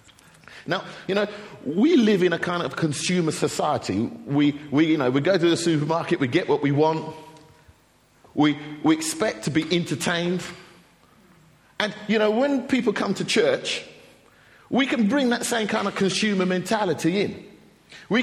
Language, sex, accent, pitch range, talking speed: English, male, British, 135-185 Hz, 165 wpm